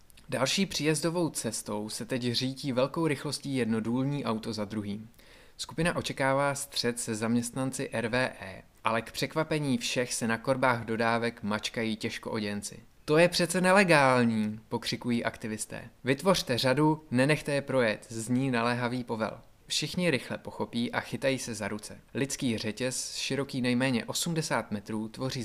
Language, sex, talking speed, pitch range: Czech, male, 135 wpm, 110-140 Hz